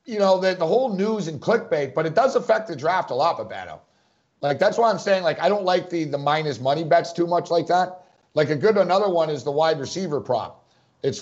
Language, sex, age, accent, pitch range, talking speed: English, male, 50-69, American, 145-190 Hz, 245 wpm